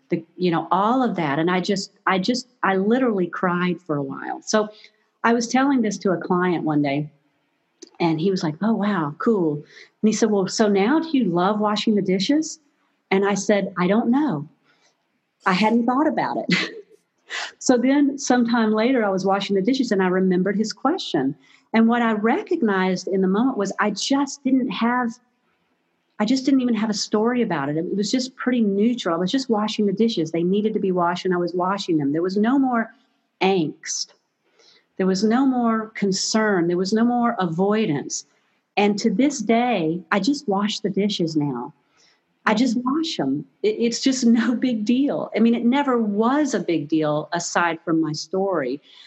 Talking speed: 195 wpm